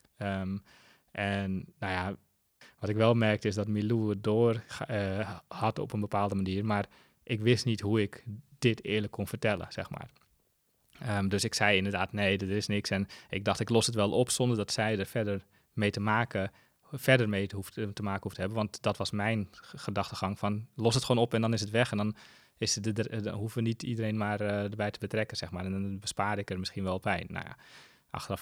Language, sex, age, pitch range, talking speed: Dutch, male, 20-39, 100-110 Hz, 220 wpm